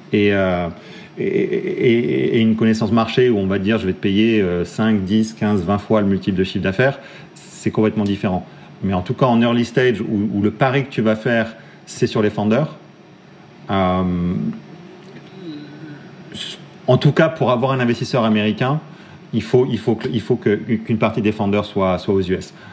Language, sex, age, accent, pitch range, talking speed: French, male, 40-59, French, 105-140 Hz, 195 wpm